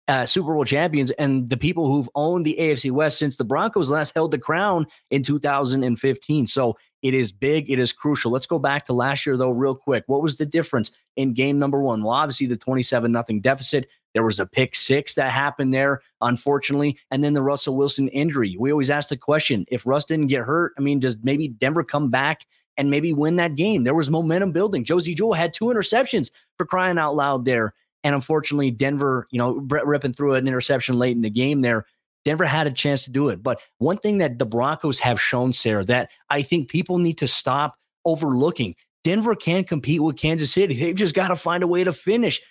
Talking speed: 220 wpm